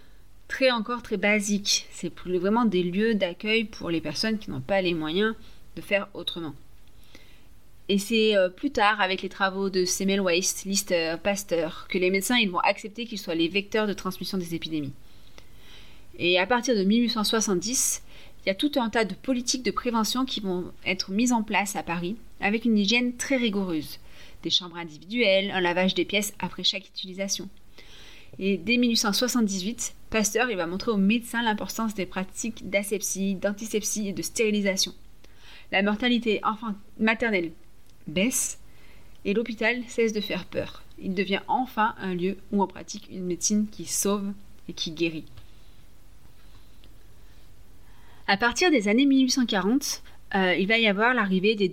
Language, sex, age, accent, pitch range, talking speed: French, female, 30-49, French, 175-220 Hz, 160 wpm